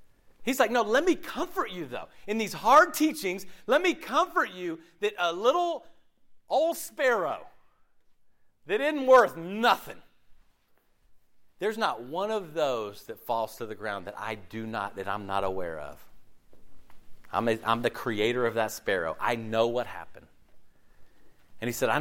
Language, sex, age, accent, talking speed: English, male, 40-59, American, 160 wpm